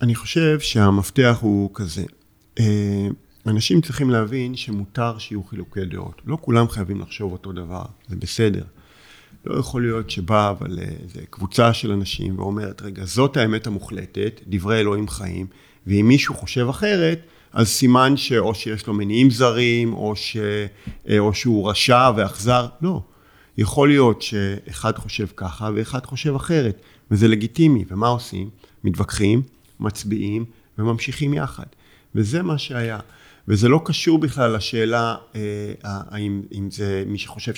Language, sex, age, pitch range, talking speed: Hebrew, male, 50-69, 105-130 Hz, 135 wpm